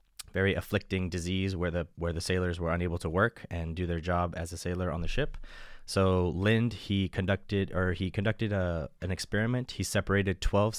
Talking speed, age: 195 wpm, 20-39